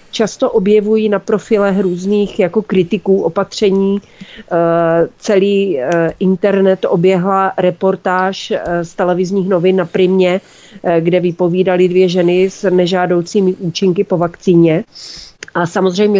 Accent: native